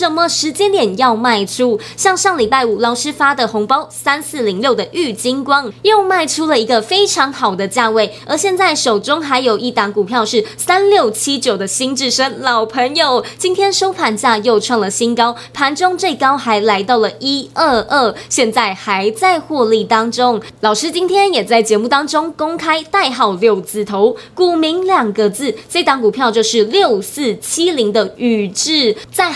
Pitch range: 225-325 Hz